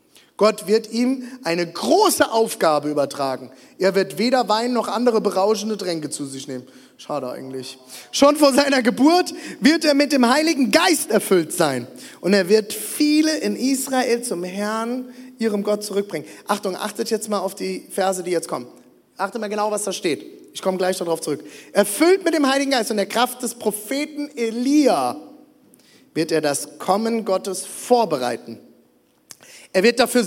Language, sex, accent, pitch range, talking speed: German, male, German, 175-280 Hz, 165 wpm